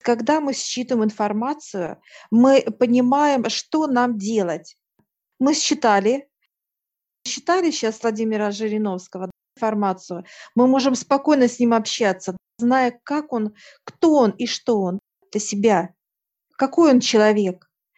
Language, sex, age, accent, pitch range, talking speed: Russian, female, 40-59, native, 210-260 Hz, 115 wpm